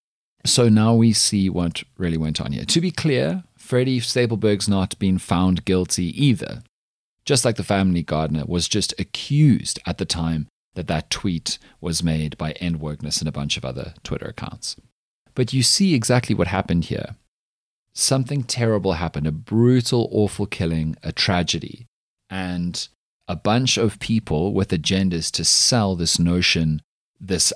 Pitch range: 80-115 Hz